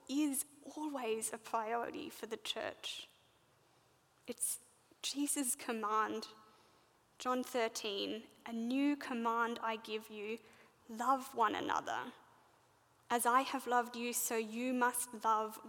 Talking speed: 115 wpm